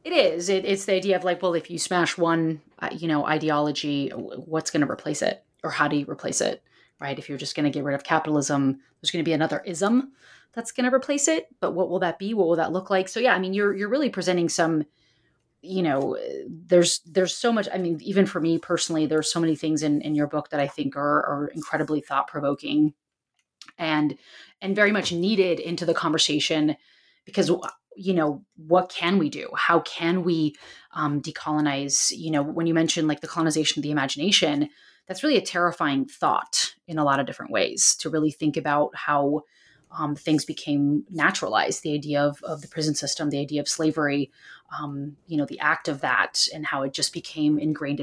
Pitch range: 145-180 Hz